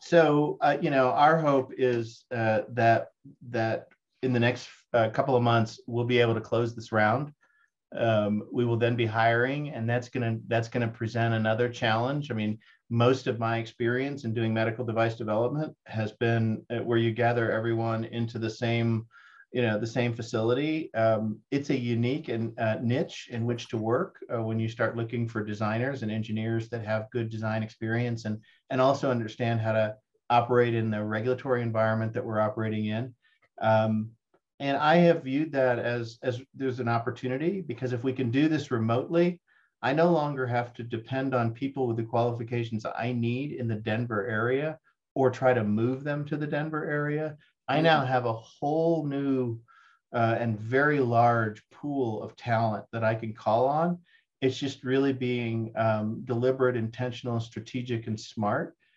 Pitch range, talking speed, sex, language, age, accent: 110-130 Hz, 180 wpm, male, English, 50-69, American